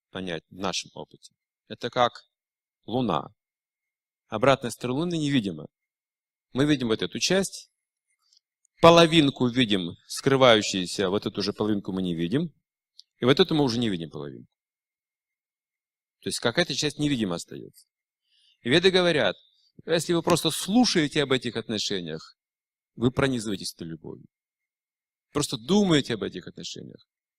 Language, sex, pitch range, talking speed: Russian, male, 110-155 Hz, 130 wpm